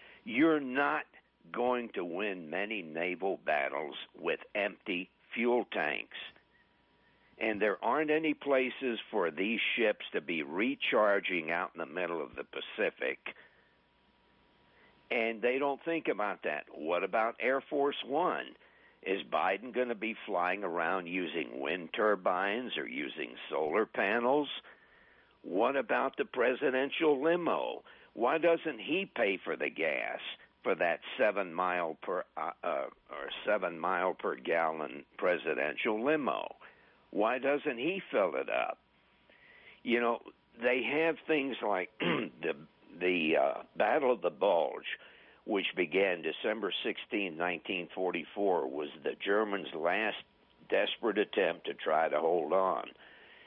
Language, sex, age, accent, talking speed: English, male, 60-79, American, 130 wpm